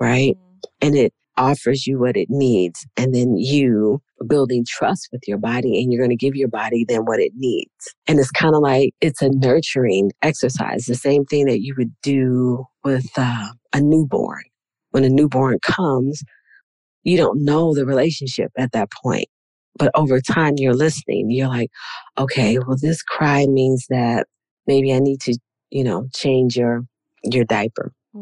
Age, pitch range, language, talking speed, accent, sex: 40-59, 125-145 Hz, English, 175 wpm, American, female